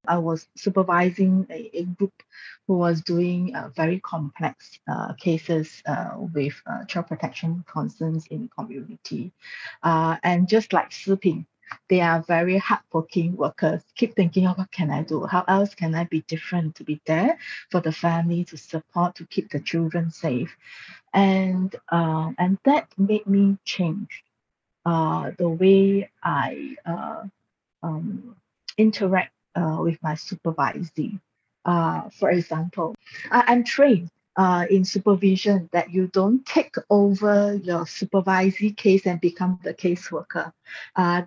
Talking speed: 140 wpm